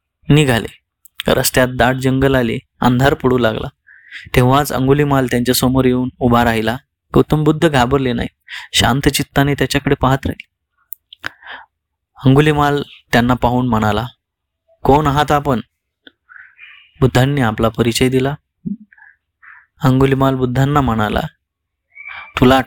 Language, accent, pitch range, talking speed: Marathi, native, 120-140 Hz, 105 wpm